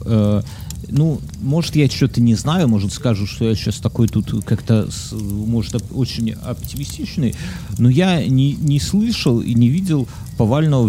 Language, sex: Russian, male